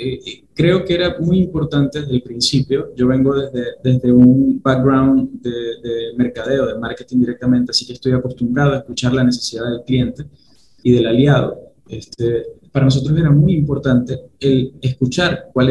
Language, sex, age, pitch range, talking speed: Spanish, male, 20-39, 125-150 Hz, 160 wpm